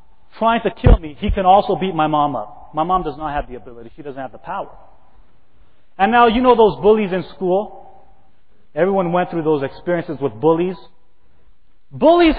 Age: 30-49